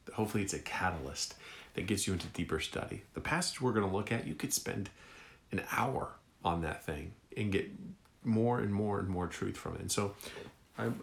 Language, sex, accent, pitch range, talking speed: English, male, American, 90-110 Hz, 205 wpm